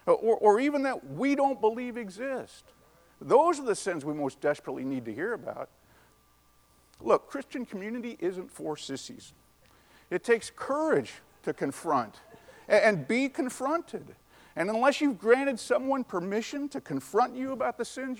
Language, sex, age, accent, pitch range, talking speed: English, male, 50-69, American, 195-270 Hz, 150 wpm